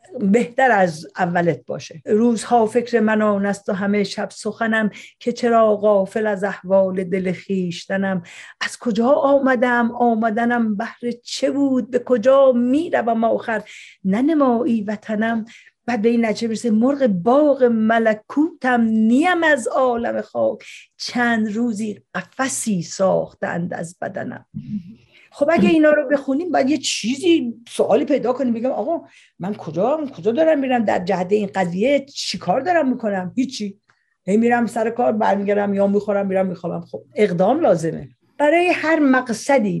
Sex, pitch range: female, 200-250 Hz